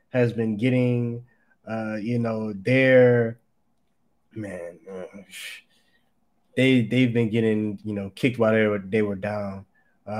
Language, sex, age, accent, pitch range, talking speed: English, male, 20-39, American, 110-135 Hz, 140 wpm